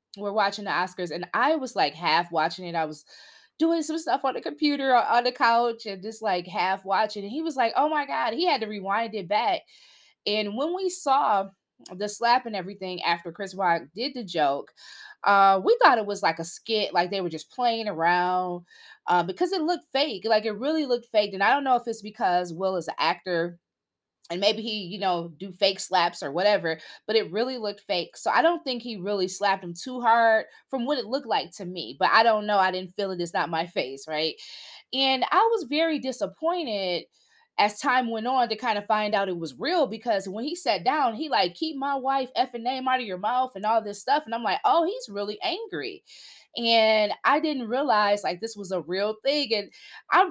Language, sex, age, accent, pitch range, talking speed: English, female, 20-39, American, 190-265 Hz, 230 wpm